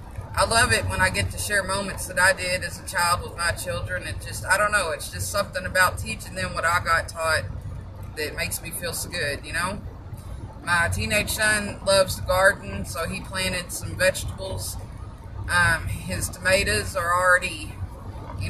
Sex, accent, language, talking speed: female, American, English, 180 wpm